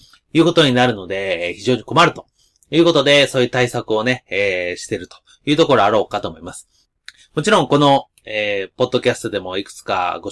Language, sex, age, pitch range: Japanese, male, 30-49, 110-155 Hz